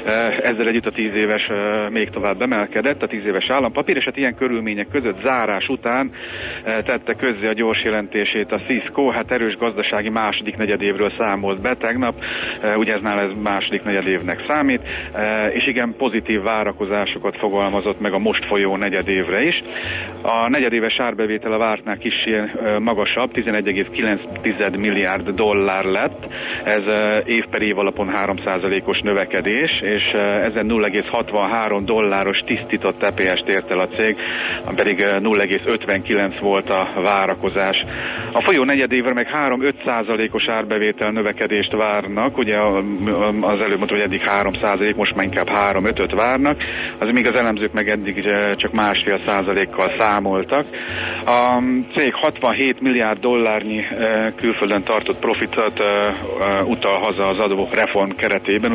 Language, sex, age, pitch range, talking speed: Hungarian, male, 40-59, 100-115 Hz, 130 wpm